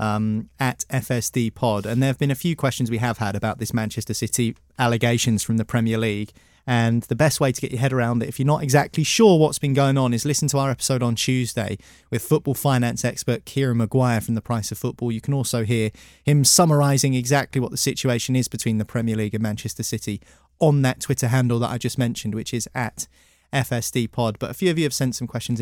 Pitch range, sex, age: 110-135 Hz, male, 20-39